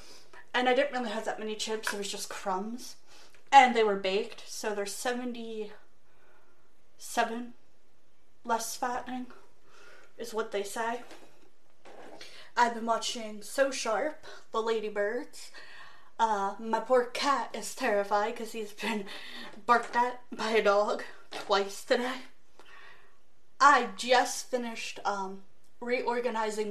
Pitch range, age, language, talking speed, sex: 215-255 Hz, 30-49, English, 120 wpm, female